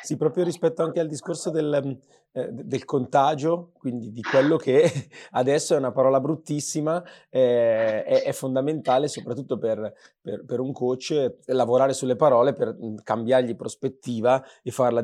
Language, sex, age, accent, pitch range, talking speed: Italian, male, 30-49, native, 115-135 Hz, 135 wpm